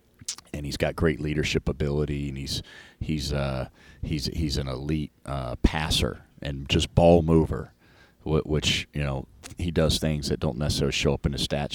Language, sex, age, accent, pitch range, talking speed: English, male, 40-59, American, 70-80 Hz, 175 wpm